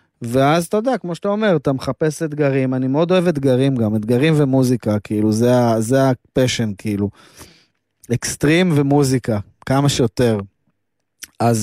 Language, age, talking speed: Hebrew, 20-39, 130 wpm